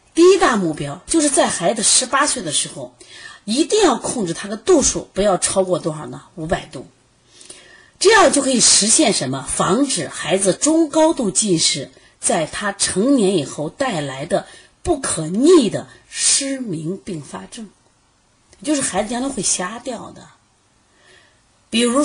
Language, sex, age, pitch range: Chinese, female, 30-49, 155-250 Hz